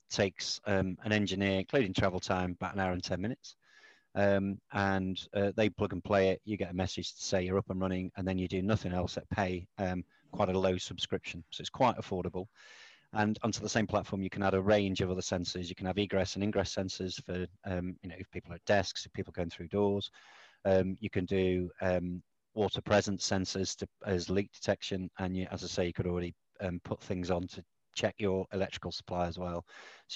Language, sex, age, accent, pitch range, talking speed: English, male, 30-49, British, 90-100 Hz, 230 wpm